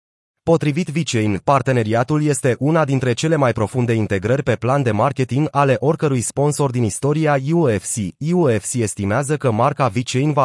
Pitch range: 115-150 Hz